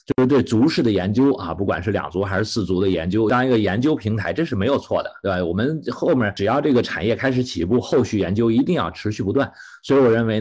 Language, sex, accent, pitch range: Chinese, male, native, 95-120 Hz